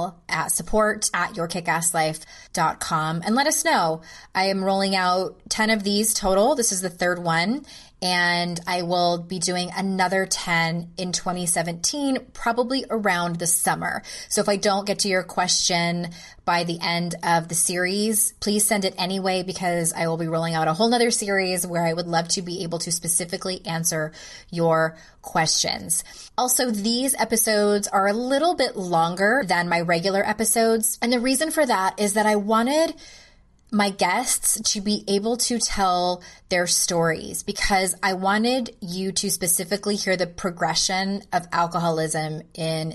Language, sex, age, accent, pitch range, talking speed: English, female, 20-39, American, 170-210 Hz, 160 wpm